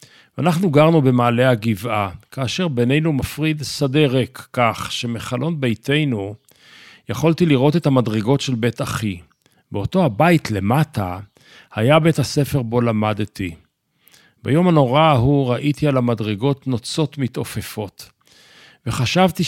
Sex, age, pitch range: male, 50-69, 115-150 Hz